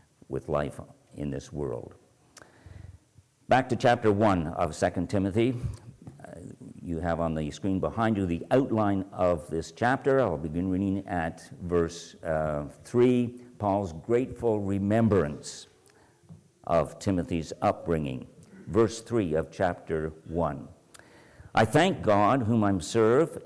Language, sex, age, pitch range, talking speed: English, male, 50-69, 90-130 Hz, 125 wpm